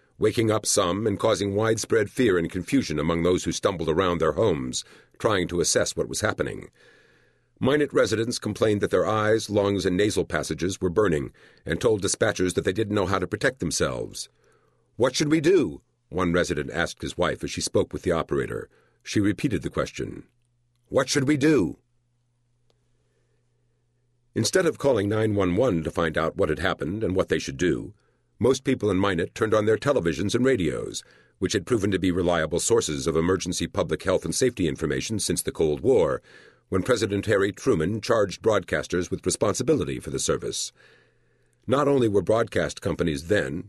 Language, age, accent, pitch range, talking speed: English, 50-69, American, 90-120 Hz, 175 wpm